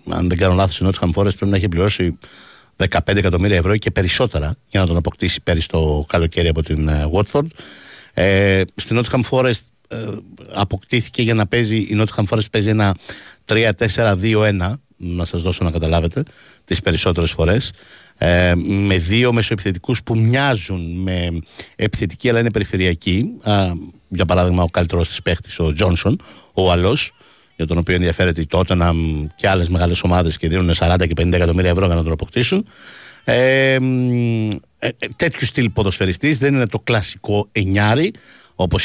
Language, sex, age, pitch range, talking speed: Greek, male, 60-79, 90-110 Hz, 155 wpm